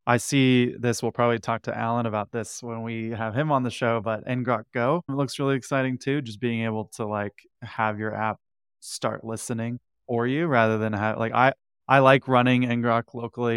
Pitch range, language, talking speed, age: 105-125 Hz, English, 205 wpm, 20-39